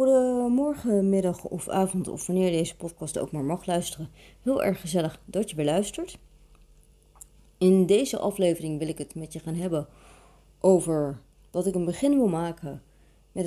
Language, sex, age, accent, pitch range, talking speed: Dutch, female, 30-49, Dutch, 160-210 Hz, 165 wpm